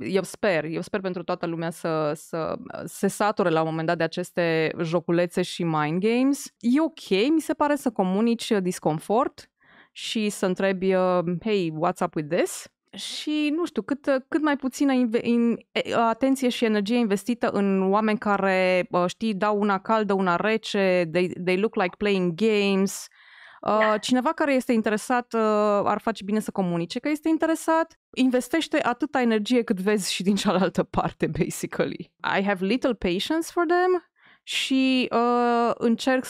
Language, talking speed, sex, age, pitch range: Romanian, 155 wpm, female, 20-39, 180-245 Hz